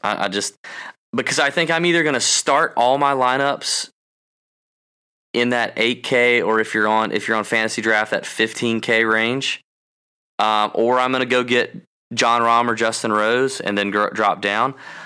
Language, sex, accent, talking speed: English, male, American, 180 wpm